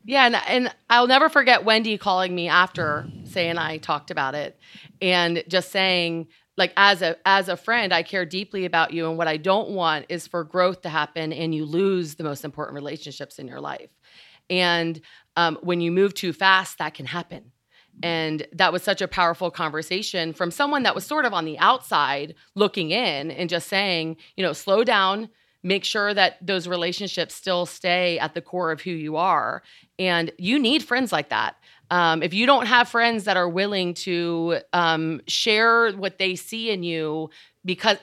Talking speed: 190 wpm